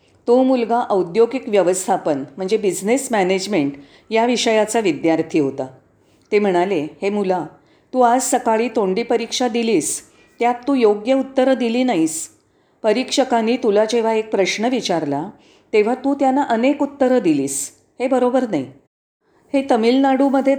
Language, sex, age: Marathi, female, 40-59